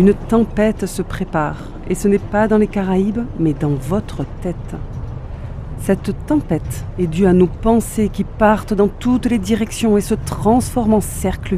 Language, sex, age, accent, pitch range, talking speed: French, female, 40-59, French, 165-210 Hz, 170 wpm